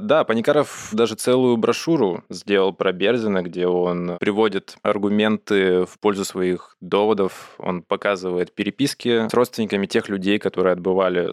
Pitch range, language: 90-110 Hz, Russian